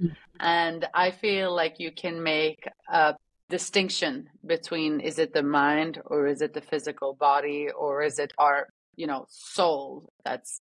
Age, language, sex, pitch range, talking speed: 30-49, English, female, 150-170 Hz, 160 wpm